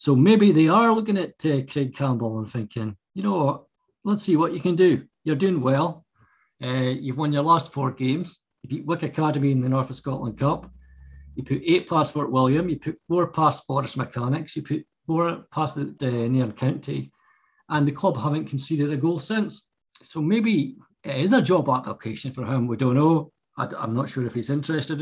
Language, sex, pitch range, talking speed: English, male, 120-155 Hz, 205 wpm